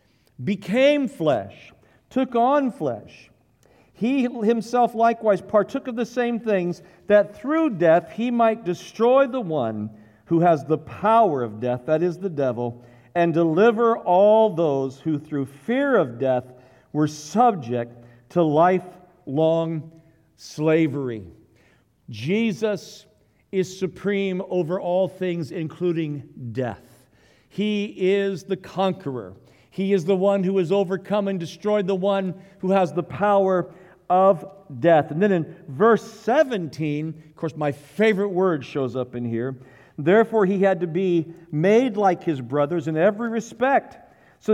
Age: 50-69